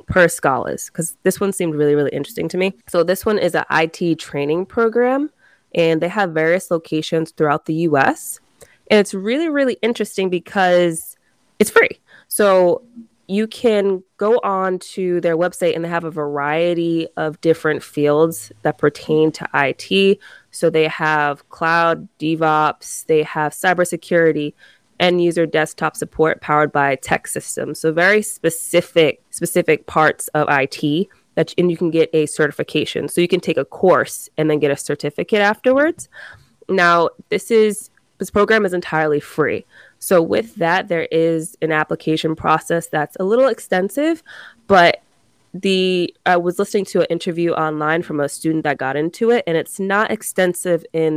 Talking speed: 165 wpm